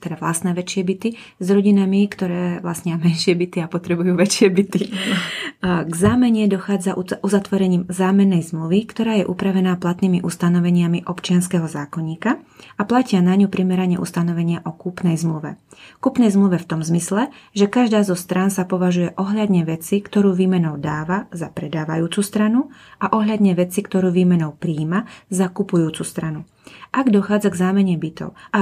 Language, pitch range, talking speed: Slovak, 170-200 Hz, 150 wpm